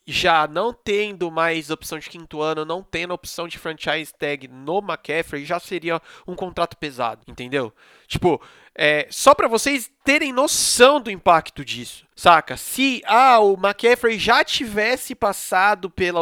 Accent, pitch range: Brazilian, 175-245 Hz